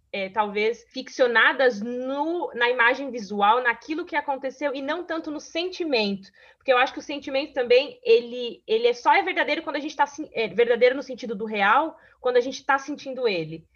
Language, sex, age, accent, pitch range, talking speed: Portuguese, female, 20-39, Brazilian, 215-285 Hz, 190 wpm